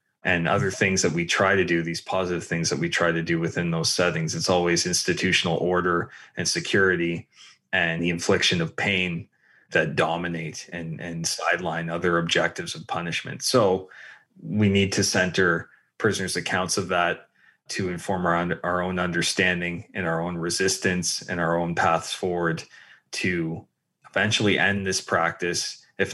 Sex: male